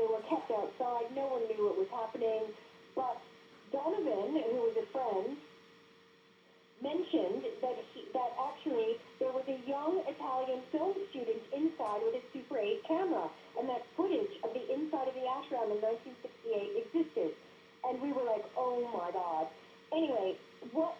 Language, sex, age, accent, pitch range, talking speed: English, female, 40-59, American, 235-365 Hz, 160 wpm